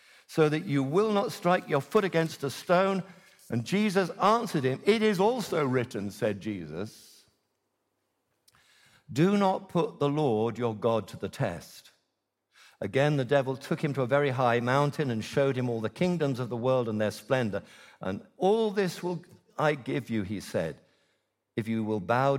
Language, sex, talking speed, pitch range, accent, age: English, male, 175 wpm, 115-155 Hz, British, 60-79